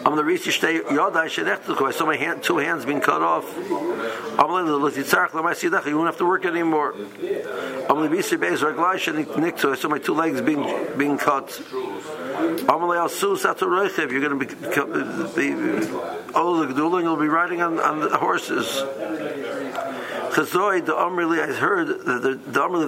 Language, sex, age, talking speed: English, male, 60-79, 105 wpm